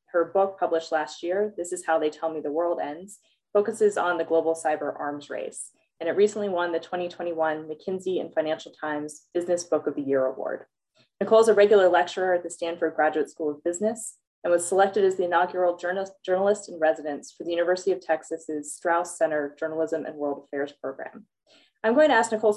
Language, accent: English, American